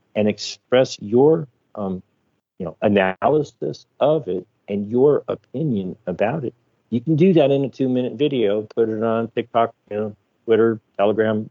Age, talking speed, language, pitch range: 50-69, 155 wpm, English, 105-130 Hz